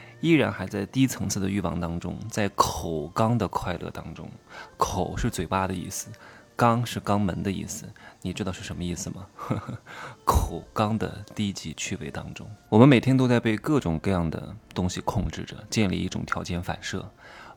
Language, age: Chinese, 20-39